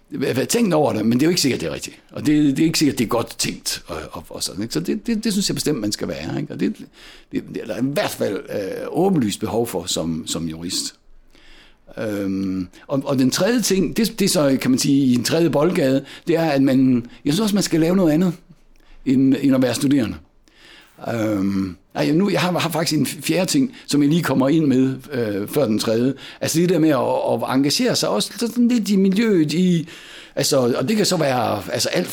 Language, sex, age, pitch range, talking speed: Danish, male, 60-79, 125-180 Hz, 240 wpm